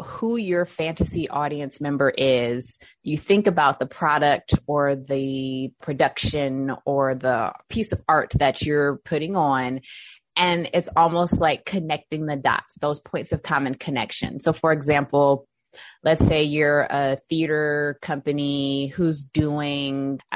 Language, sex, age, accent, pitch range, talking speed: English, female, 20-39, American, 135-165 Hz, 140 wpm